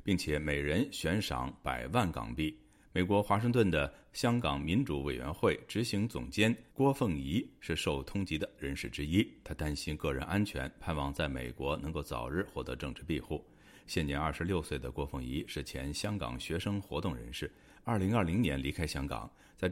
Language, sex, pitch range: Chinese, male, 70-100 Hz